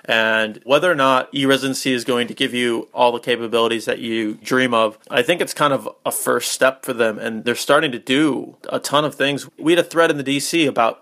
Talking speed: 240 wpm